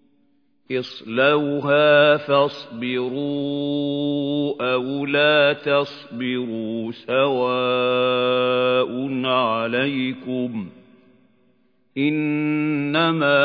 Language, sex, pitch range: Arabic, male, 125-150 Hz